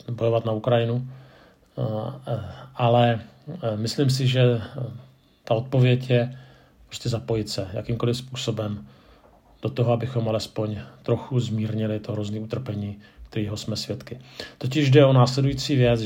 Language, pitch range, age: Czech, 115-130 Hz, 40-59